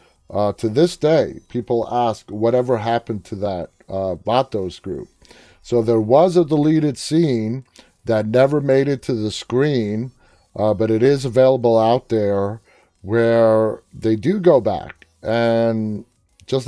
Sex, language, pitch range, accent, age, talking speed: male, English, 105-125 Hz, American, 30-49, 145 wpm